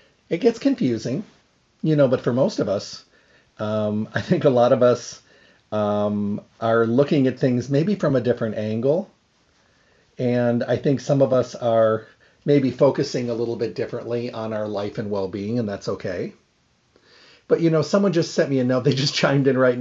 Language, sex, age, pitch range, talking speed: English, male, 50-69, 110-140 Hz, 190 wpm